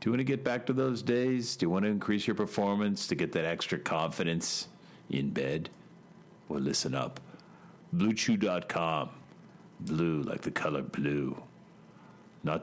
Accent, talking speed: American, 155 wpm